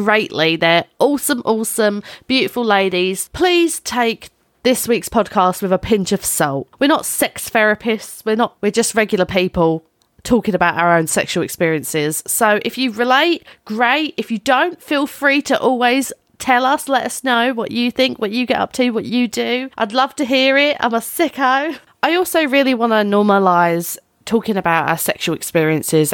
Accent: British